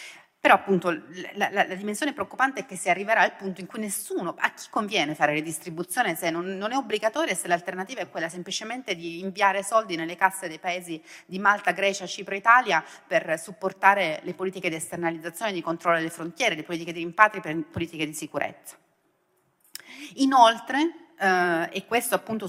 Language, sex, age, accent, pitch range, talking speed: Italian, female, 30-49, native, 170-220 Hz, 180 wpm